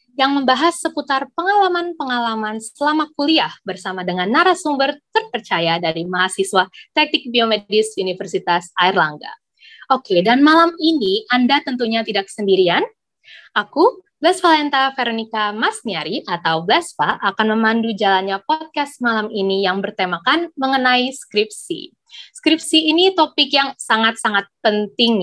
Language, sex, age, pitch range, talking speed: Indonesian, female, 20-39, 195-295 Hz, 110 wpm